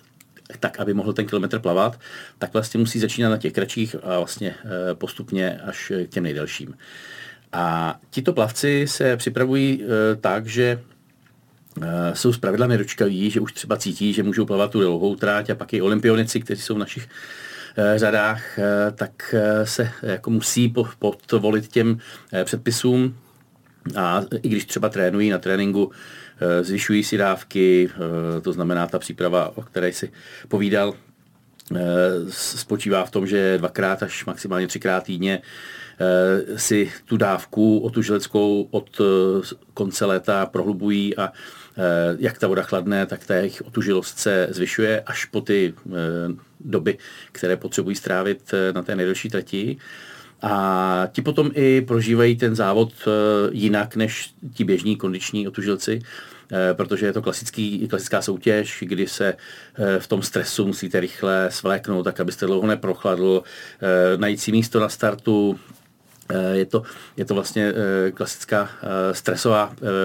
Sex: male